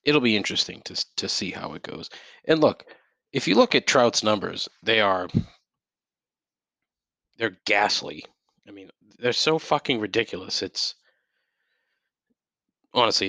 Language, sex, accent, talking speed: English, male, American, 130 wpm